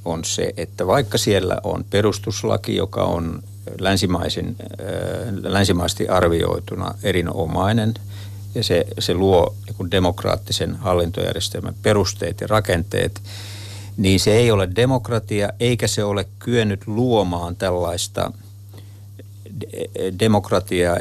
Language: Finnish